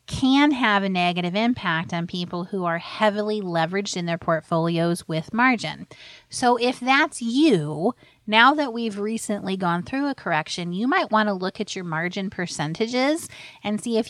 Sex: female